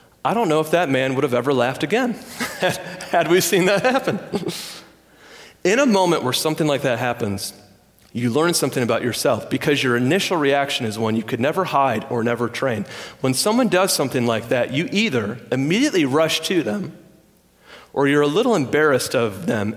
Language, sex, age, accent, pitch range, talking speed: English, male, 40-59, American, 115-175 Hz, 185 wpm